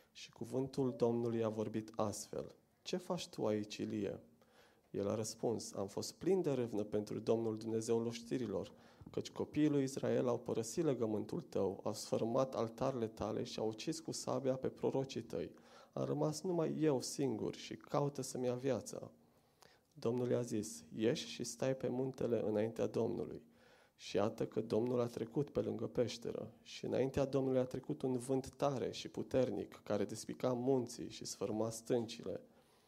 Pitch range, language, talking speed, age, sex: 110-135 Hz, Romanian, 160 wpm, 30-49, male